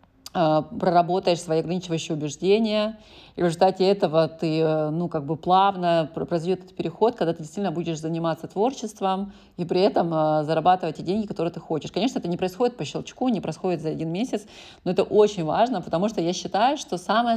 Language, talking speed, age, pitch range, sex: Russian, 180 wpm, 30-49, 165-205 Hz, female